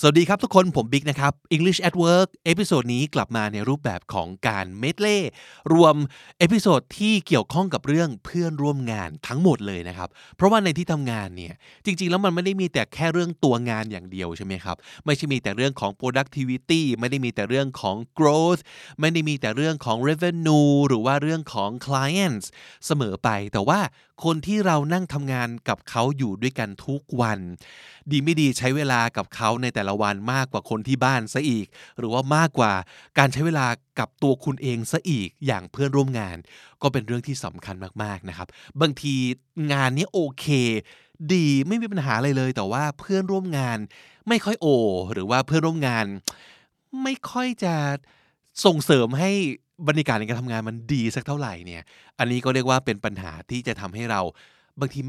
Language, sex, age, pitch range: Thai, male, 20-39, 110-160 Hz